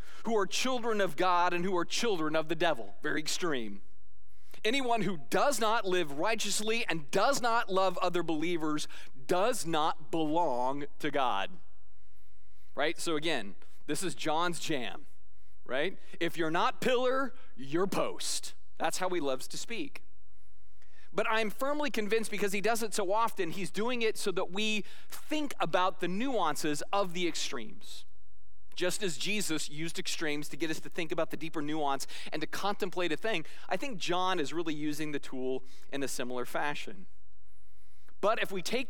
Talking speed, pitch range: 170 wpm, 130-200 Hz